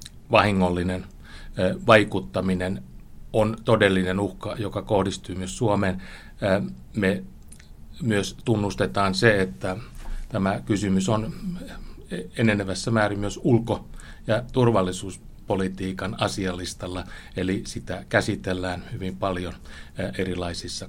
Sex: male